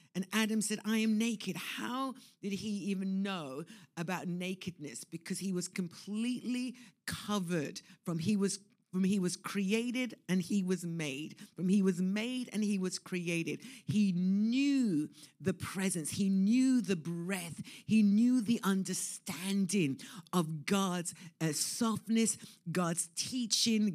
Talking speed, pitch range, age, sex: 135 wpm, 180-215 Hz, 50-69, female